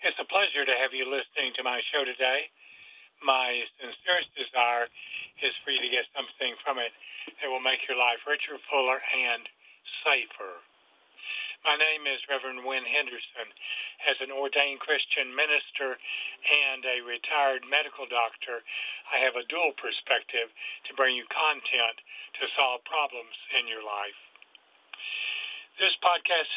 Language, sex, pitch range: English, male, 130-150 Hz